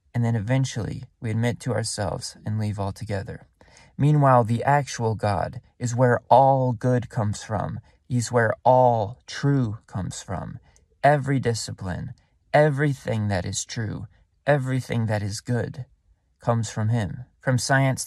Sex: male